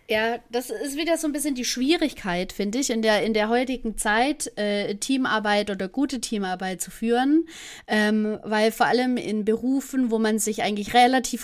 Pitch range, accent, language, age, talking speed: 210-255 Hz, German, German, 30-49, 185 wpm